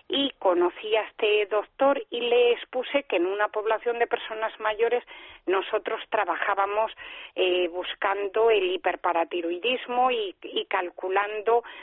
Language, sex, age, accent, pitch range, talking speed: Spanish, female, 40-59, Spanish, 200-275 Hz, 120 wpm